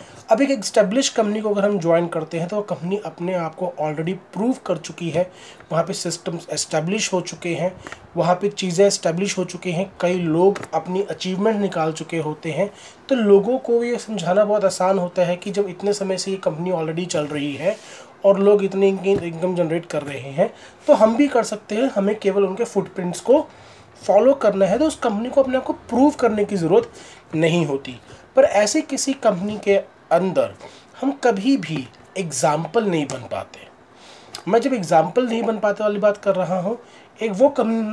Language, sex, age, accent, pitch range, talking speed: Hindi, male, 30-49, native, 165-210 Hz, 200 wpm